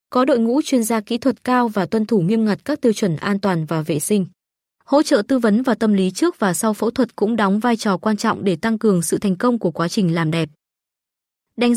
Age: 20-39